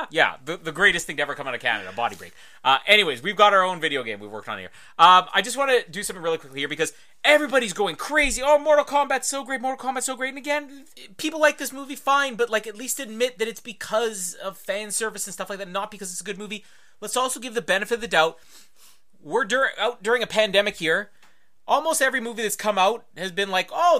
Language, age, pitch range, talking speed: English, 30-49, 185-255 Hz, 255 wpm